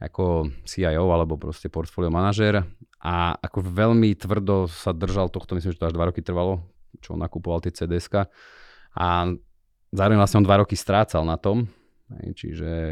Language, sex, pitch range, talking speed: Slovak, male, 85-105 Hz, 160 wpm